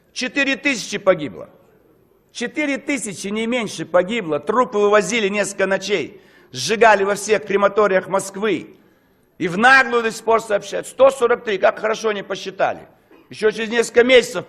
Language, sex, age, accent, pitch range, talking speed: Russian, male, 60-79, native, 185-235 Hz, 135 wpm